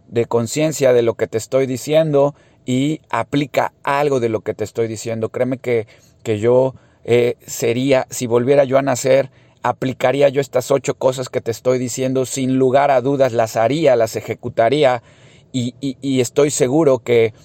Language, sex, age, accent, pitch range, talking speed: Spanish, male, 30-49, Mexican, 115-140 Hz, 175 wpm